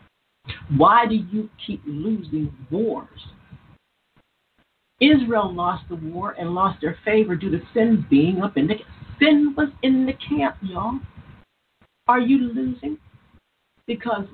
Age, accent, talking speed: 50-69, American, 135 wpm